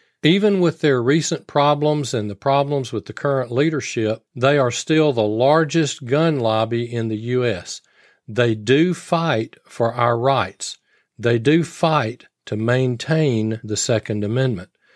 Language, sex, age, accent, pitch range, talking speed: English, male, 40-59, American, 115-155 Hz, 145 wpm